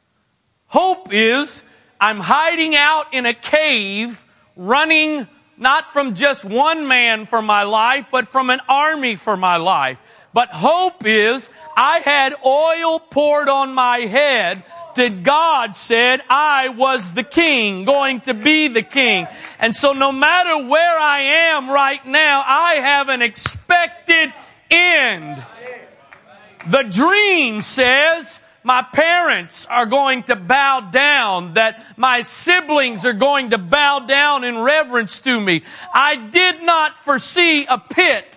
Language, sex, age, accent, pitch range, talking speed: English, male, 40-59, American, 245-320 Hz, 140 wpm